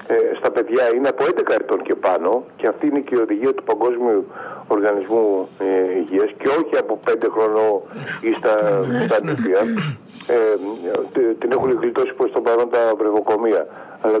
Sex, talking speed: male, 160 wpm